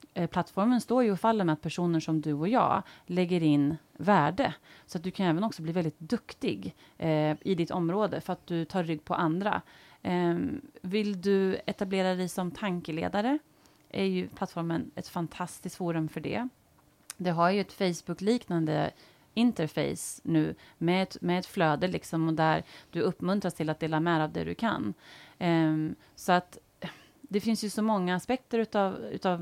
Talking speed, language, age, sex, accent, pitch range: 165 wpm, Swedish, 30-49, female, Norwegian, 160-200 Hz